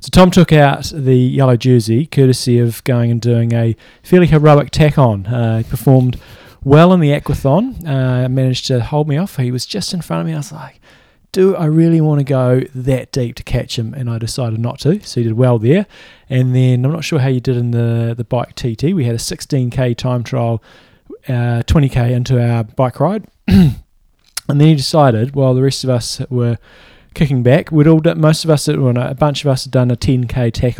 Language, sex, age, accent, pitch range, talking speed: English, male, 20-39, Australian, 120-145 Hz, 215 wpm